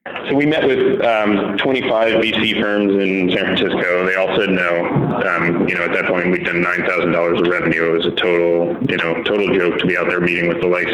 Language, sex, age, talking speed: English, male, 20-39, 230 wpm